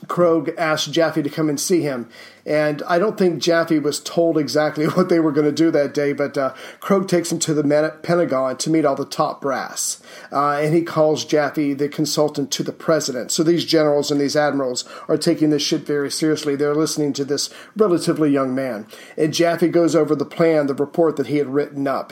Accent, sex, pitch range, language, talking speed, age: American, male, 145-165 Hz, English, 215 wpm, 40-59